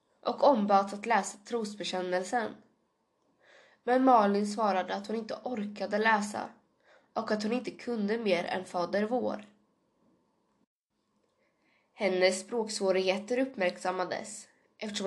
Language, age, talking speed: Swedish, 20-39, 105 wpm